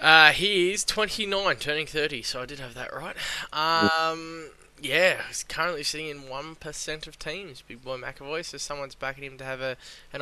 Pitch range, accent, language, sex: 135-165 Hz, Australian, English, male